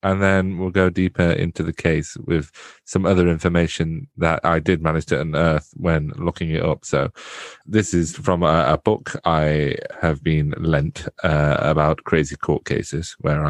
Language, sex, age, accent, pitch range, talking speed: English, male, 30-49, British, 85-100 Hz, 175 wpm